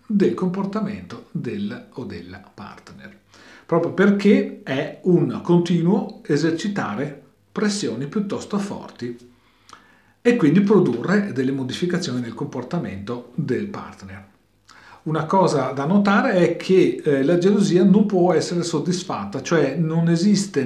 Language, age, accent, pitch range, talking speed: Italian, 40-59, native, 125-190 Hz, 115 wpm